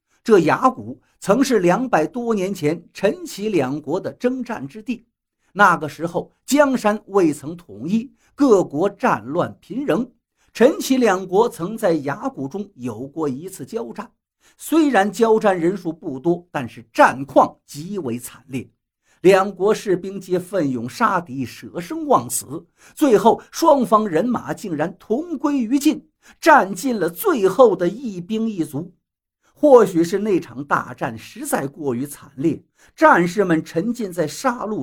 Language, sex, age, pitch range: Chinese, male, 50-69, 165-245 Hz